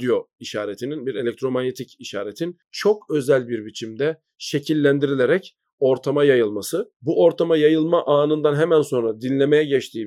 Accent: native